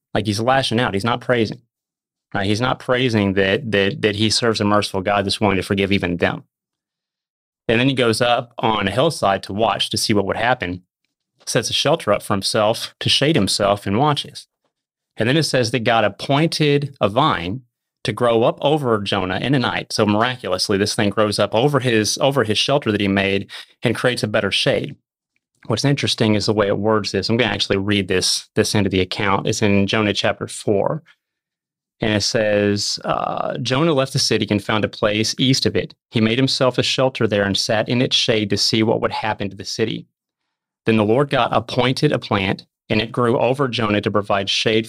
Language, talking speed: English, 215 wpm